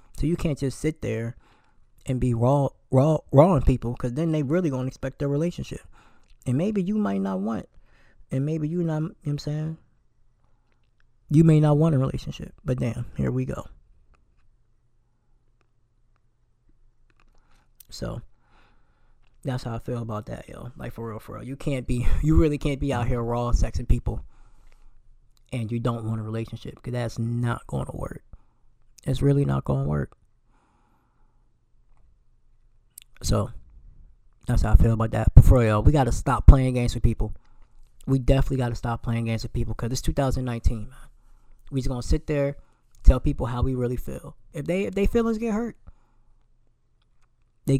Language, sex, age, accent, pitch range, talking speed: English, male, 20-39, American, 115-140 Hz, 175 wpm